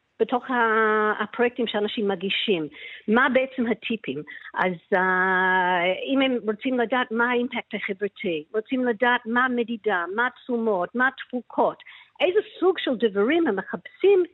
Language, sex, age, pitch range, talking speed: Hebrew, female, 50-69, 190-250 Hz, 125 wpm